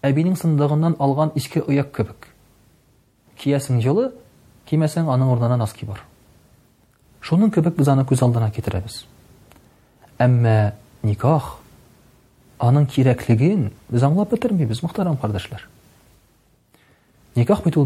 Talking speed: 125 wpm